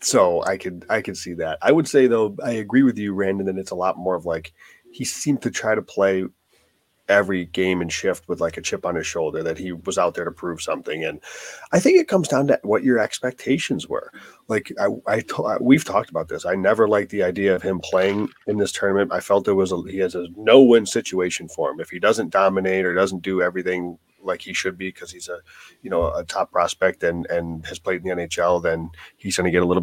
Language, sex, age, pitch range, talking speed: English, male, 30-49, 90-110 Hz, 250 wpm